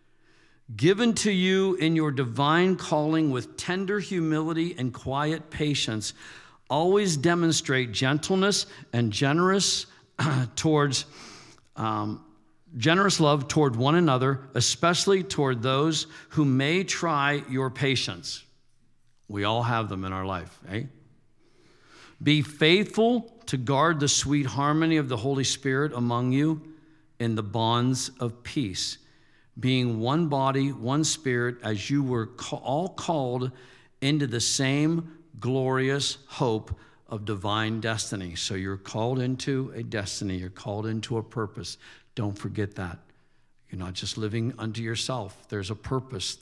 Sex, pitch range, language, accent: male, 110-150 Hz, English, American